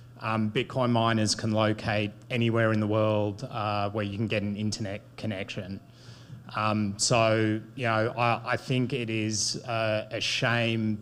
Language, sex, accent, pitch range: English, male, Australian, 110-120 Hz